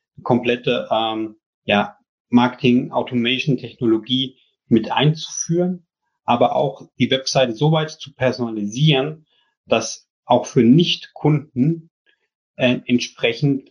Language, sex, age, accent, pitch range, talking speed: German, male, 30-49, German, 115-135 Hz, 95 wpm